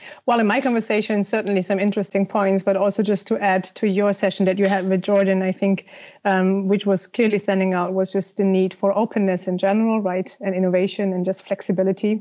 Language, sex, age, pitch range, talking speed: English, female, 30-49, 185-200 Hz, 210 wpm